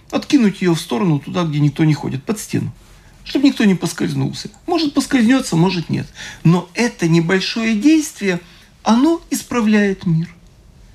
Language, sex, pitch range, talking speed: Russian, male, 155-205 Hz, 140 wpm